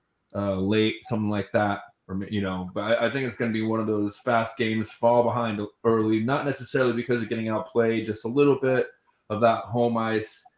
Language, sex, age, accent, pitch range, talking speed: English, male, 20-39, American, 105-120 Hz, 215 wpm